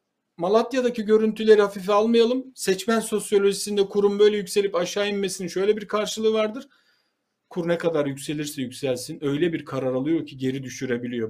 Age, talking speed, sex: 50-69, 145 wpm, male